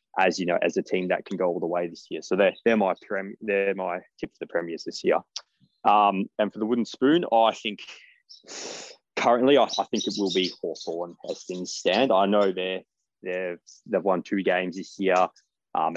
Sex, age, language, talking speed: male, 20-39, English, 215 wpm